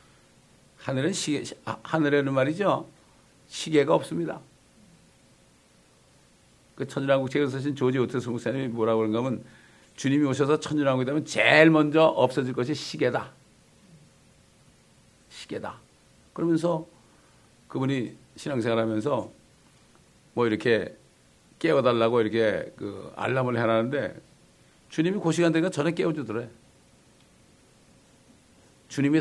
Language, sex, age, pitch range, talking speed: English, male, 60-79, 110-150 Hz, 85 wpm